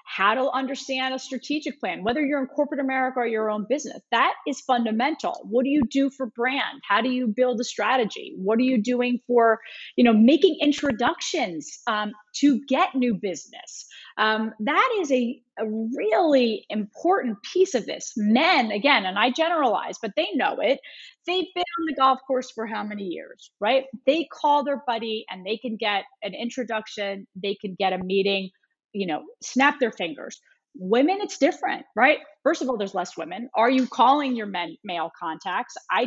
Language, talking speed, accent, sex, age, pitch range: English, 185 wpm, American, female, 30-49, 205-265 Hz